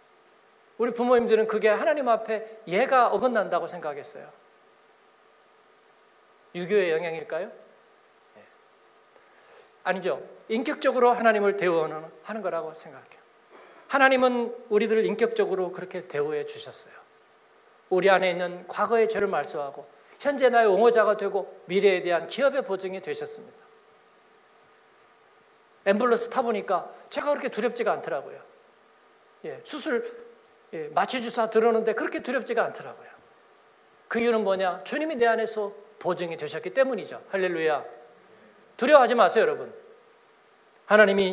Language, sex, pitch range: Korean, male, 190-270 Hz